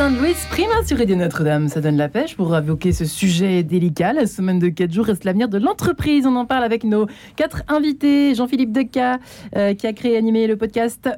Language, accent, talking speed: French, French, 215 wpm